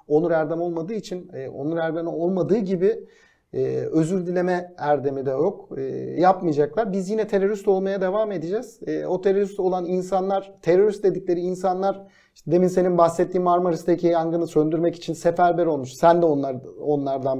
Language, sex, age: Turkish, male, 40-59